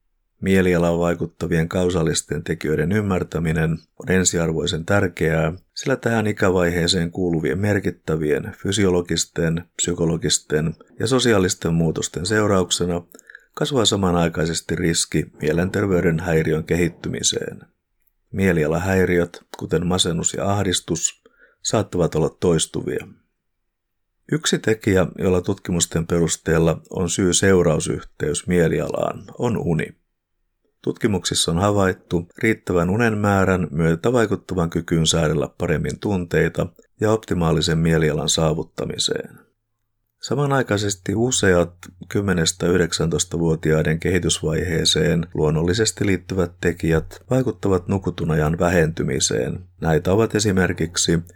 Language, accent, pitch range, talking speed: Finnish, native, 85-100 Hz, 85 wpm